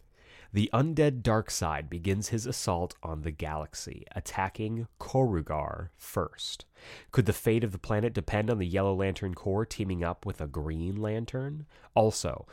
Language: English